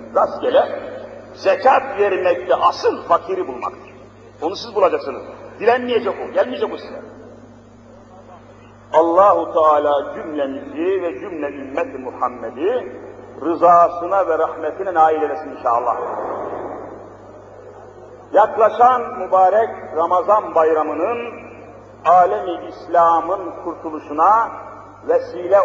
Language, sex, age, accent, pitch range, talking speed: Turkish, male, 50-69, native, 140-225 Hz, 80 wpm